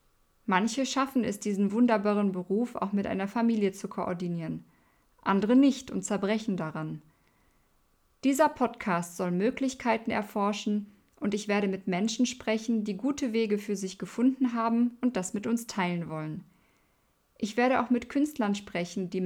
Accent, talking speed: German, 150 wpm